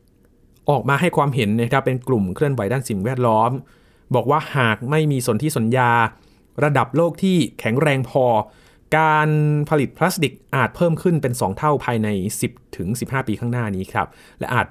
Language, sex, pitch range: Thai, male, 110-135 Hz